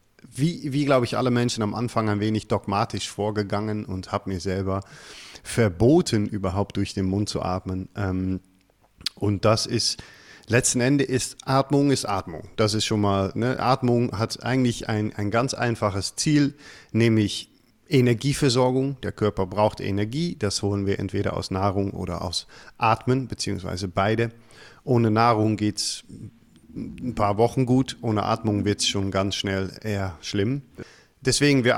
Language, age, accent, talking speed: German, 40-59, German, 150 wpm